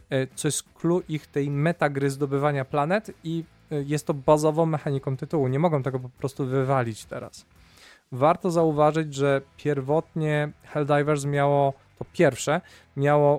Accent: native